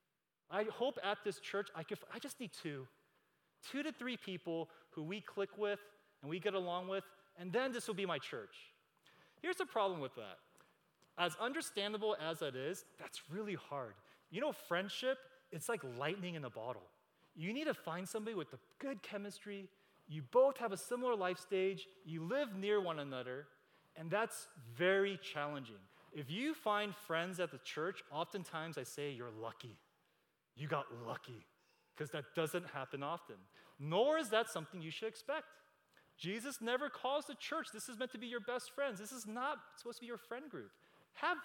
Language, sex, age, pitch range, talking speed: English, male, 30-49, 160-245 Hz, 185 wpm